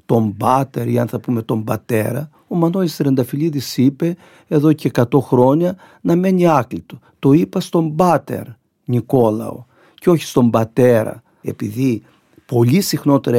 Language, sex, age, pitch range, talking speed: Greek, male, 50-69, 120-160 Hz, 140 wpm